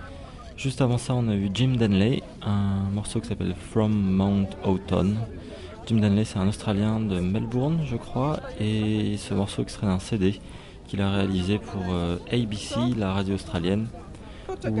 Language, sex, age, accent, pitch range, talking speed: English, male, 30-49, French, 95-115 Hz, 160 wpm